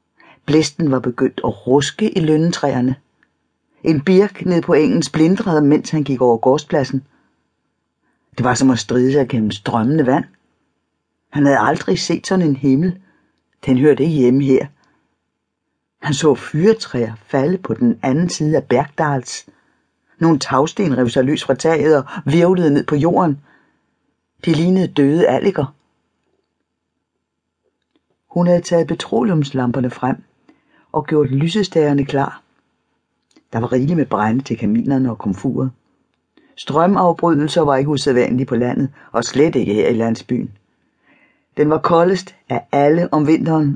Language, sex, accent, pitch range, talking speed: Danish, female, native, 130-165 Hz, 140 wpm